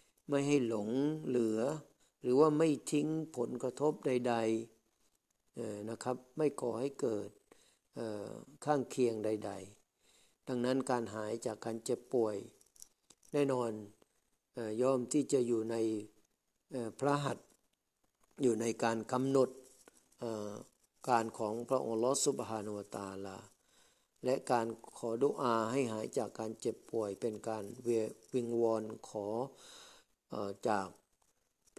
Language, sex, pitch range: Thai, male, 110-130 Hz